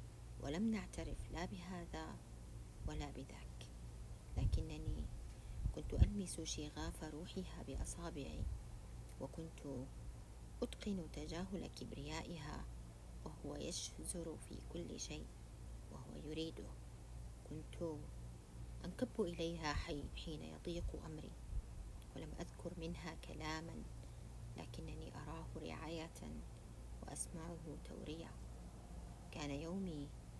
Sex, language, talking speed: female, Arabic, 80 wpm